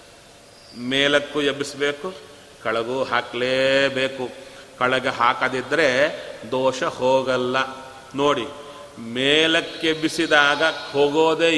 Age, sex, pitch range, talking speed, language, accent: 40-59, male, 130-160 Hz, 60 wpm, Kannada, native